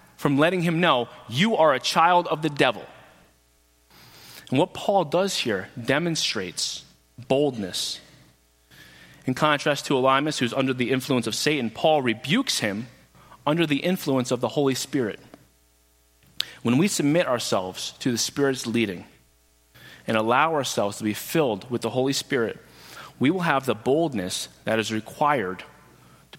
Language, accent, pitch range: English, American, 100-150 Hz